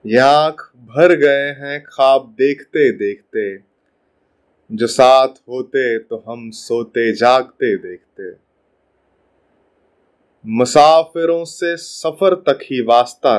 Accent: native